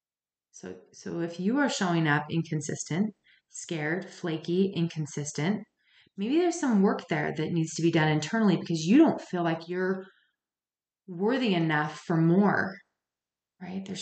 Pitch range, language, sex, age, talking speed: 165-200 Hz, English, female, 30-49, 145 wpm